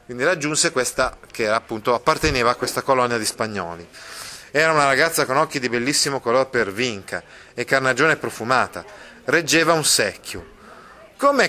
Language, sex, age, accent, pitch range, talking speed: Italian, male, 30-49, native, 120-155 Hz, 145 wpm